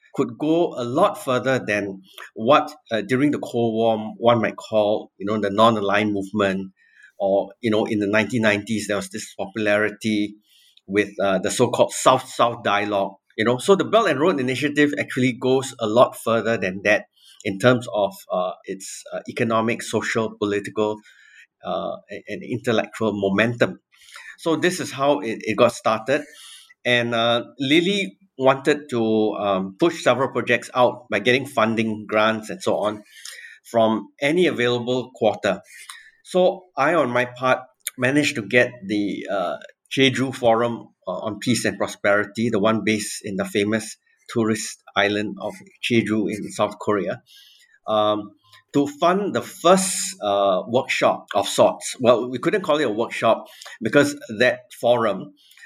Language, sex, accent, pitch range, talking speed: English, male, Malaysian, 105-135 Hz, 155 wpm